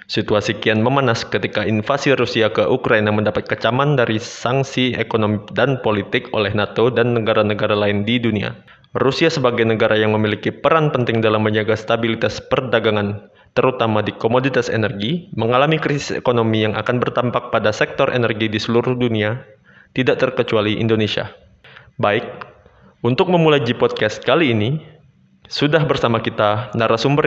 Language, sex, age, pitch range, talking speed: Indonesian, male, 20-39, 105-130 Hz, 135 wpm